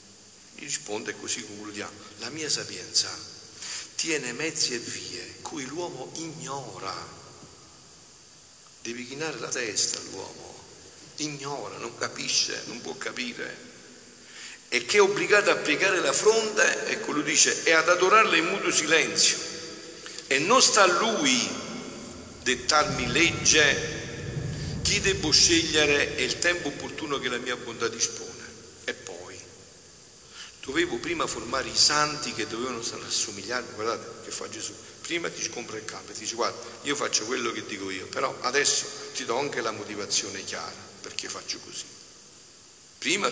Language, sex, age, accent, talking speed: Italian, male, 50-69, native, 140 wpm